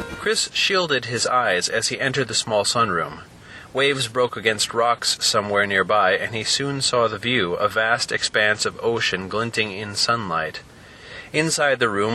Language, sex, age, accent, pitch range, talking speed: English, male, 30-49, American, 110-135 Hz, 165 wpm